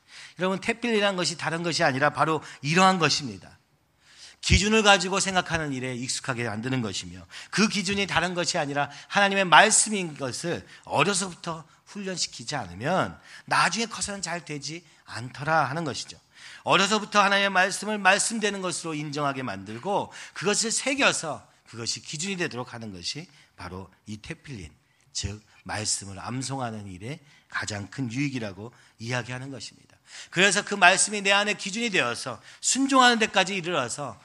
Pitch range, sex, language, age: 120-190 Hz, male, Korean, 40-59